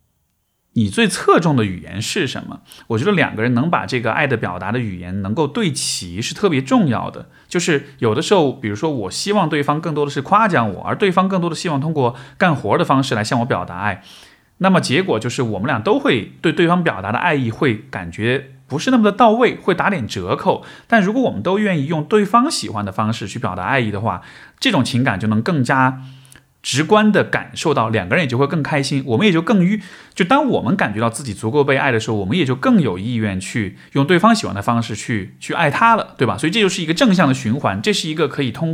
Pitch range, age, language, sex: 110-170 Hz, 20-39, Chinese, male